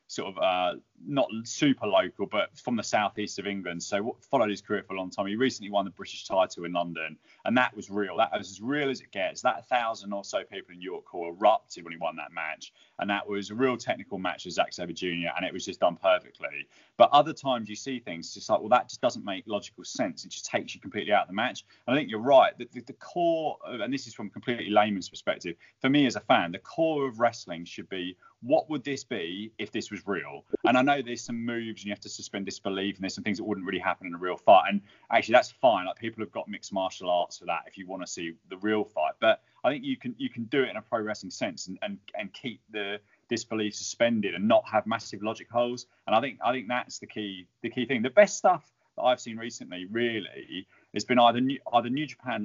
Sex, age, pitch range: male, 20-39, 100-125 Hz